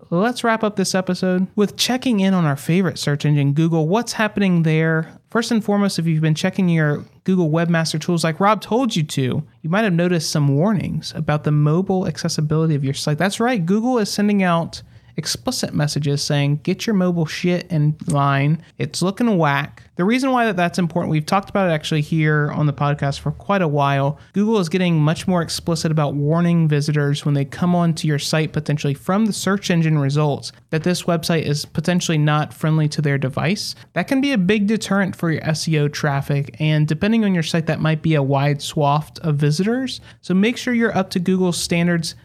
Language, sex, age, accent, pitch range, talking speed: English, male, 30-49, American, 150-185 Hz, 205 wpm